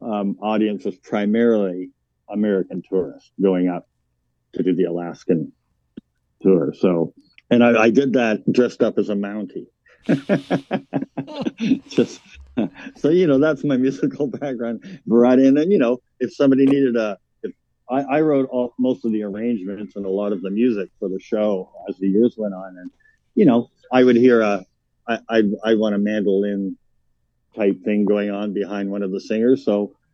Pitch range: 100-130 Hz